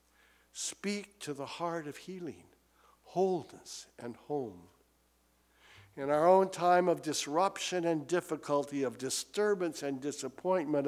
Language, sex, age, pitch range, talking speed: English, male, 60-79, 150-215 Hz, 115 wpm